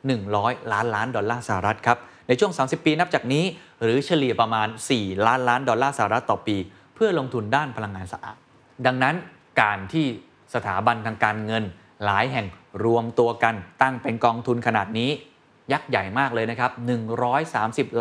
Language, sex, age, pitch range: Thai, male, 20-39, 110-140 Hz